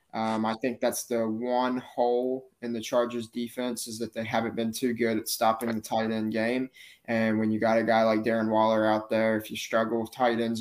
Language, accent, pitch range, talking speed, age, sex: English, American, 110-120 Hz, 230 wpm, 20-39, male